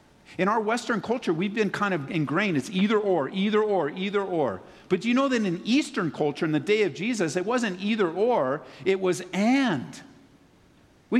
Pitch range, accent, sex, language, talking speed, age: 140-215 Hz, American, male, English, 200 wpm, 50-69